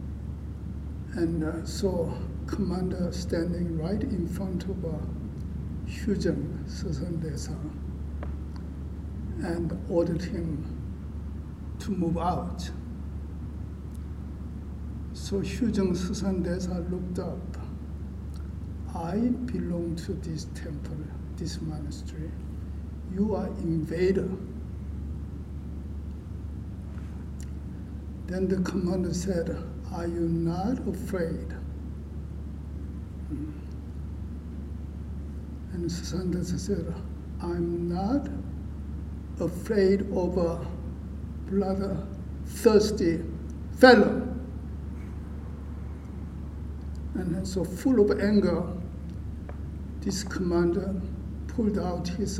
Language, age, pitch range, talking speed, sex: English, 60-79, 75-90 Hz, 75 wpm, male